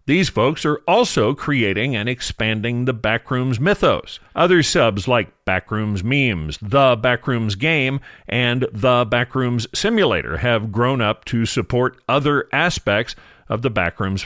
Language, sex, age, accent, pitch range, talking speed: English, male, 50-69, American, 115-155 Hz, 135 wpm